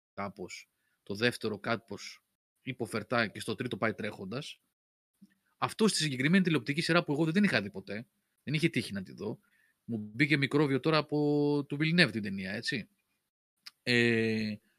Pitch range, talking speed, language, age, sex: 110-155 Hz, 155 wpm, Greek, 30-49, male